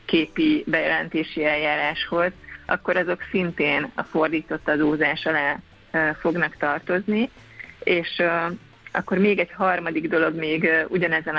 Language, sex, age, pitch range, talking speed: Hungarian, female, 30-49, 160-185 Hz, 105 wpm